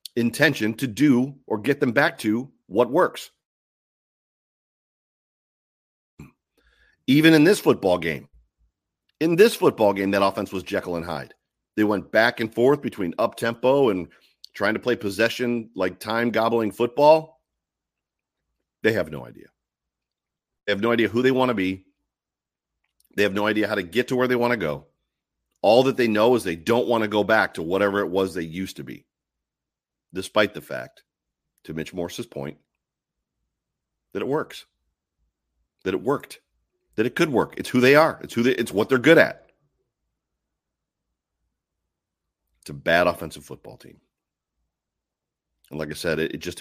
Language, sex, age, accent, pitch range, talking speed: English, male, 40-59, American, 80-120 Hz, 165 wpm